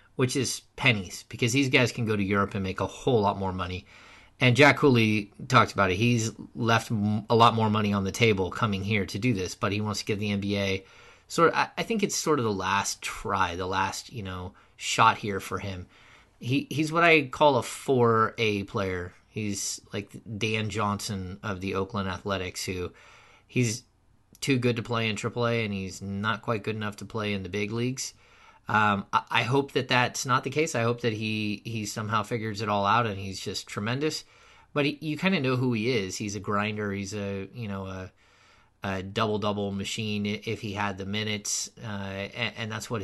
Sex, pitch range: male, 100-120 Hz